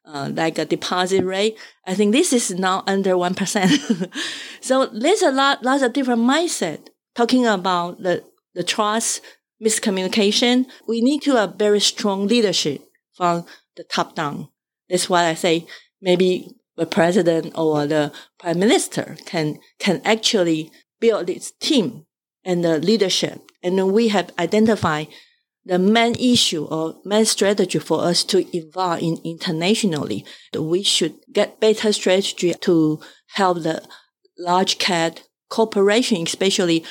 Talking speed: 140 wpm